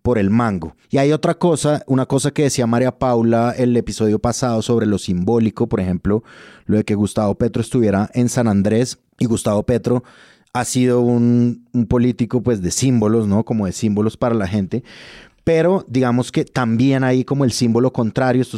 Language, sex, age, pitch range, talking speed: Spanish, male, 30-49, 105-125 Hz, 190 wpm